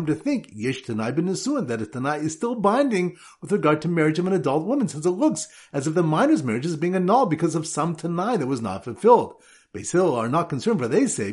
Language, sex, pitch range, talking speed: English, male, 145-225 Hz, 240 wpm